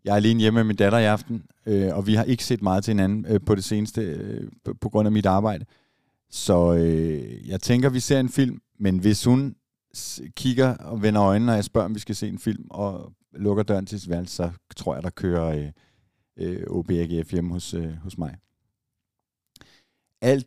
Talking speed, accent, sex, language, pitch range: 210 wpm, native, male, Danish, 95-115 Hz